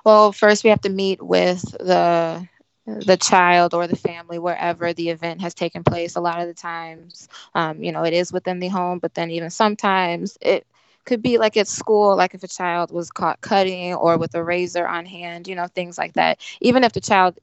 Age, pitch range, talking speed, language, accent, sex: 20-39, 165-185 Hz, 220 wpm, English, American, female